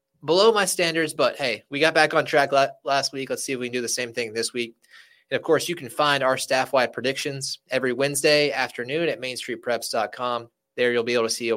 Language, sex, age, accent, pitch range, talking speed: English, male, 20-39, American, 120-150 Hz, 235 wpm